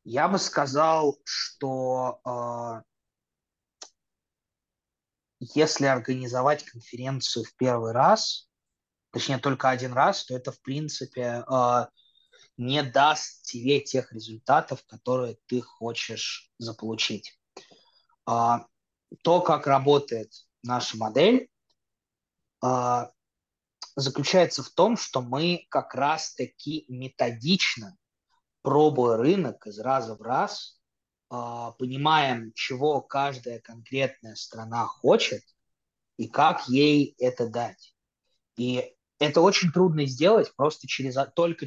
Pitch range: 120-145 Hz